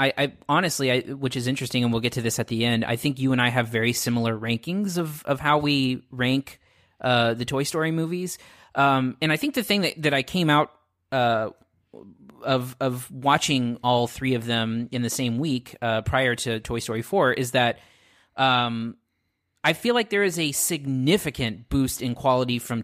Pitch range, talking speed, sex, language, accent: 115-150 Hz, 200 wpm, male, English, American